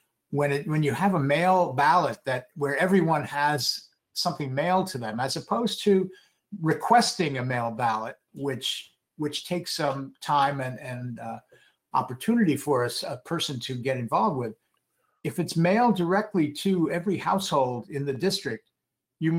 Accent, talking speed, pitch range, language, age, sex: American, 160 wpm, 130-180 Hz, English, 60-79, male